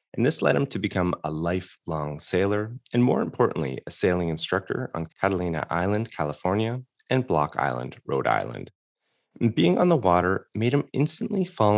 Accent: American